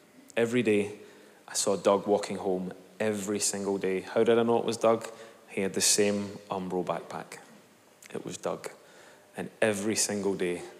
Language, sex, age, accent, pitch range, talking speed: English, male, 20-39, British, 105-120 Hz, 165 wpm